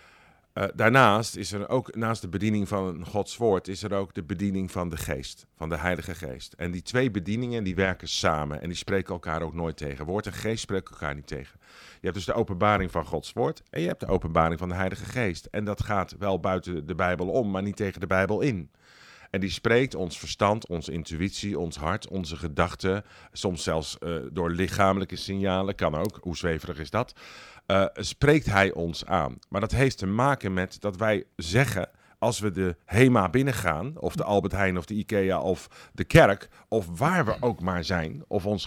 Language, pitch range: Dutch, 85-105 Hz